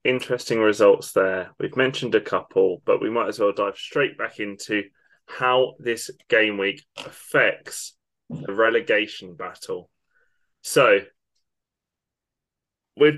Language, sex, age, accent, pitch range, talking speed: English, male, 20-39, British, 120-170 Hz, 120 wpm